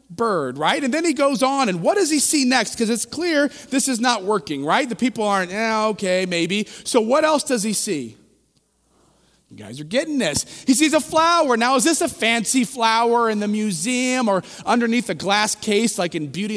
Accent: American